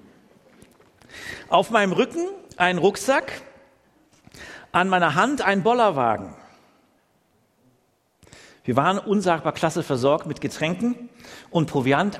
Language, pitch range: German, 140-215 Hz